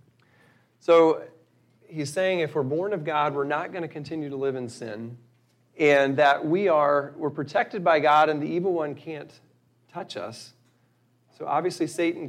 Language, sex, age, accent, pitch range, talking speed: English, male, 40-59, American, 135-165 Hz, 170 wpm